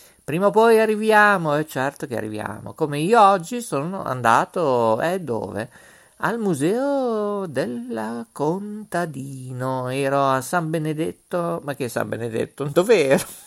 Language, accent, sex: Italian, native, male